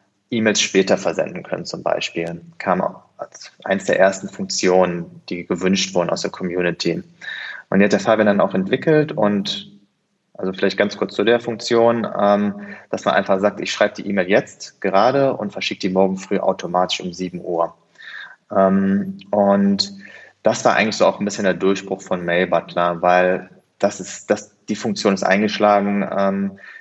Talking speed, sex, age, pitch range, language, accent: 175 wpm, male, 20-39, 95-115 Hz, German, German